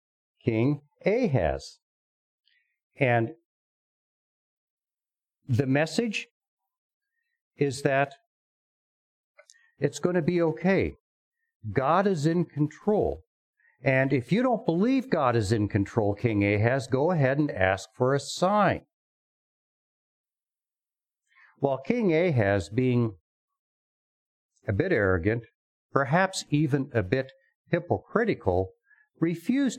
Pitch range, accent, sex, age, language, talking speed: 115-175 Hz, American, male, 60-79, English, 95 wpm